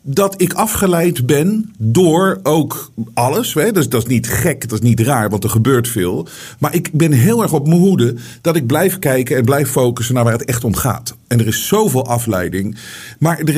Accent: Dutch